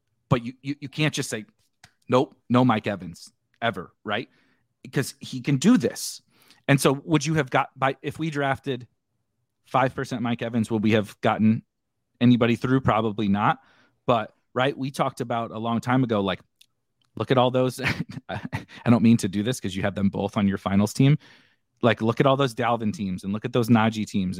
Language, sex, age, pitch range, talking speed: English, male, 30-49, 110-130 Hz, 205 wpm